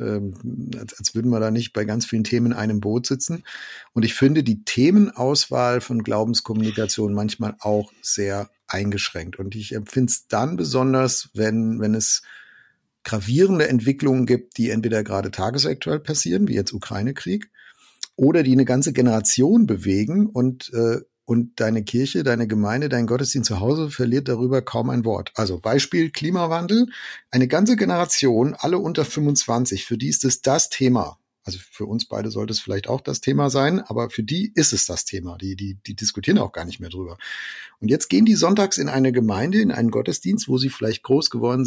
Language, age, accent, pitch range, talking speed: German, 50-69, German, 105-135 Hz, 180 wpm